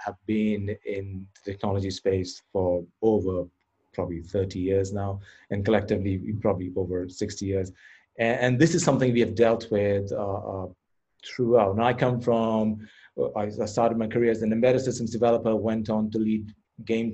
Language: English